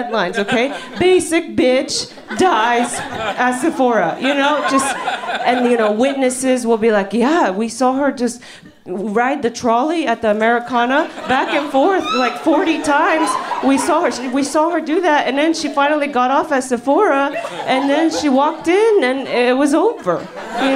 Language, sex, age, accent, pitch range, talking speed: English, female, 30-49, American, 230-310 Hz, 175 wpm